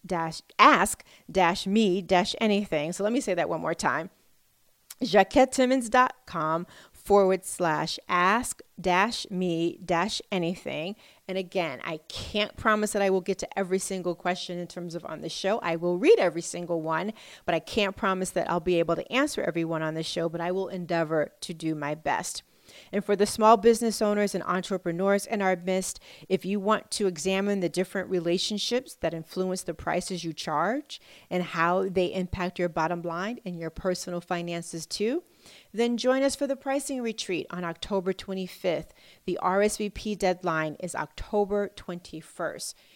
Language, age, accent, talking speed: English, 40-59, American, 170 wpm